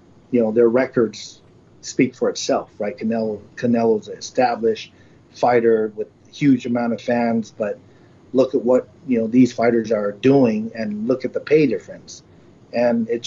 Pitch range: 120-145 Hz